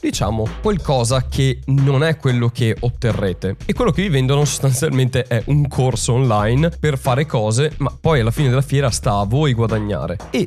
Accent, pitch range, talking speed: native, 115-150 Hz, 185 wpm